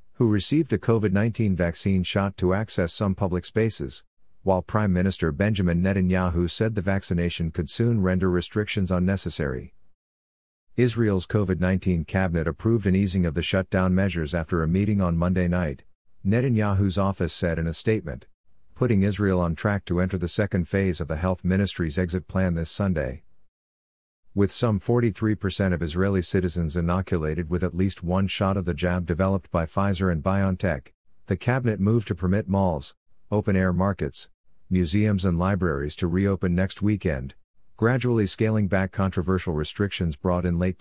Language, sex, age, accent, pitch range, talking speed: English, male, 50-69, American, 85-100 Hz, 155 wpm